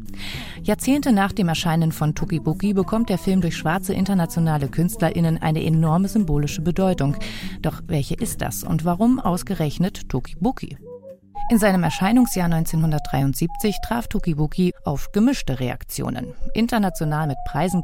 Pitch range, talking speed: 155-210 Hz, 125 wpm